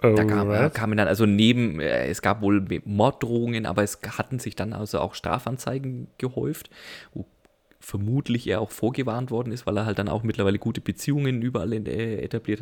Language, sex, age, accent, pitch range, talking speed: German, male, 30-49, German, 100-120 Hz, 170 wpm